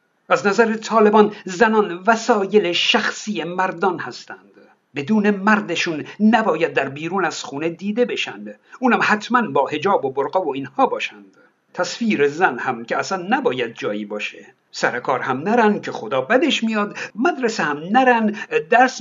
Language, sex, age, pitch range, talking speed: Persian, male, 50-69, 170-225 Hz, 140 wpm